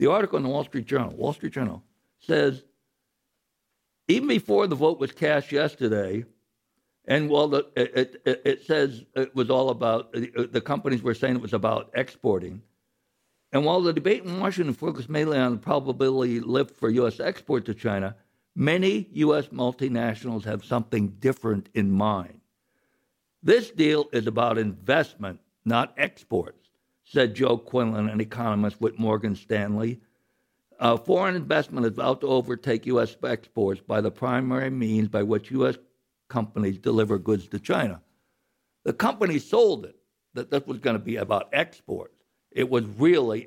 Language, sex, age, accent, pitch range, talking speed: English, male, 60-79, American, 110-140 Hz, 155 wpm